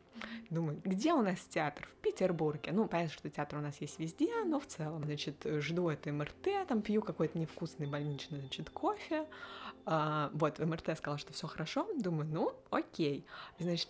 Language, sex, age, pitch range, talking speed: Russian, female, 20-39, 150-195 Hz, 180 wpm